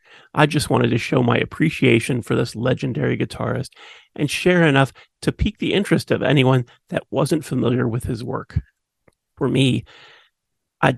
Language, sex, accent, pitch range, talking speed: English, male, American, 130-170 Hz, 160 wpm